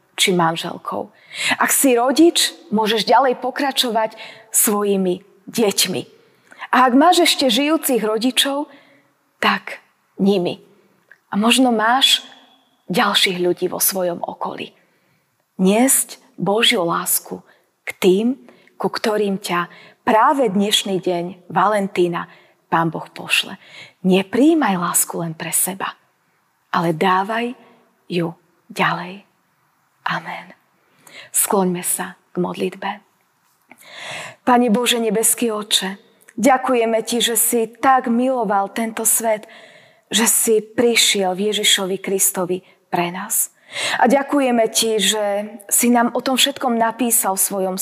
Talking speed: 110 wpm